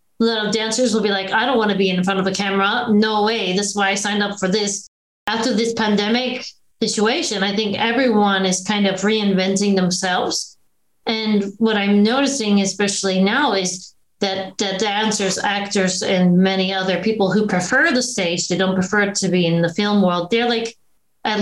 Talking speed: 195 wpm